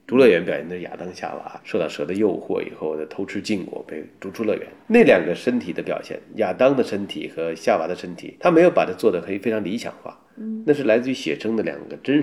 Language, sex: Chinese, male